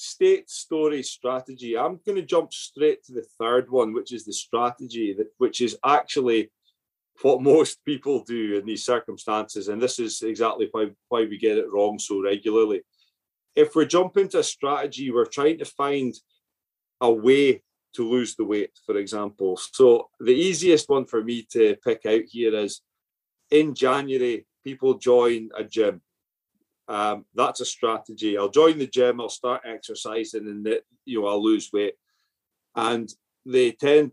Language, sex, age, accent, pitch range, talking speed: English, male, 30-49, British, 110-180 Hz, 165 wpm